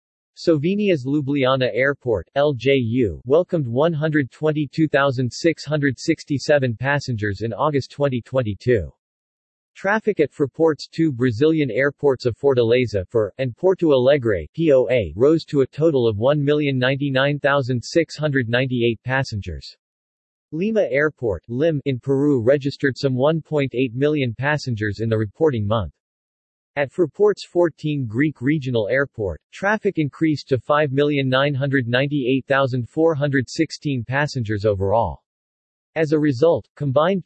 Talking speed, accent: 95 wpm, American